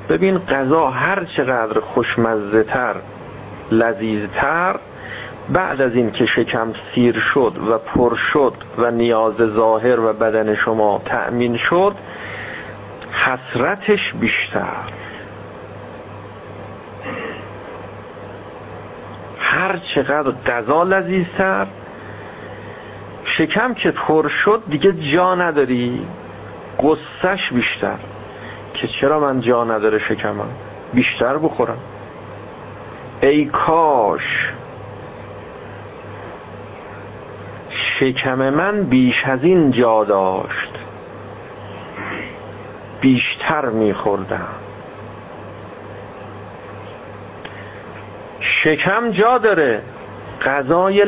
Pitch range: 100-130 Hz